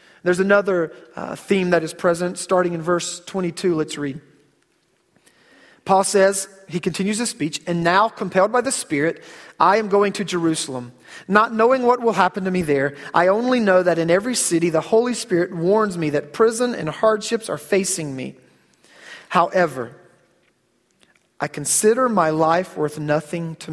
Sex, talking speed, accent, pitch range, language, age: male, 165 wpm, American, 165-215 Hz, English, 40-59